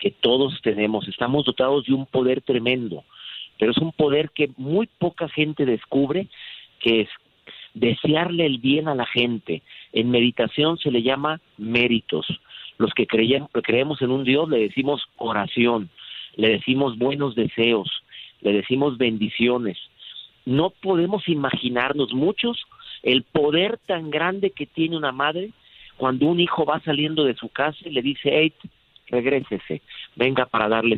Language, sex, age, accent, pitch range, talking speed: Spanish, male, 50-69, Mexican, 120-155 Hz, 150 wpm